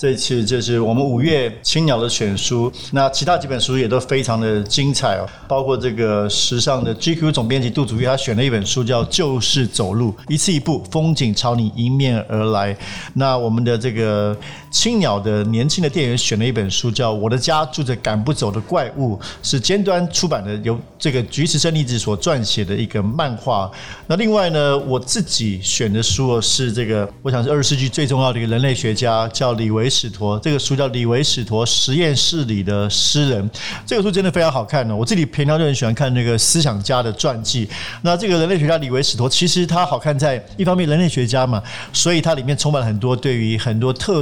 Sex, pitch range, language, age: male, 115-150 Hz, Chinese, 50-69